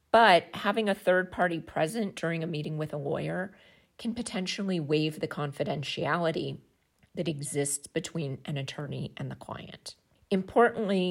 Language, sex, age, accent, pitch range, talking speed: English, female, 40-59, American, 150-195 Hz, 140 wpm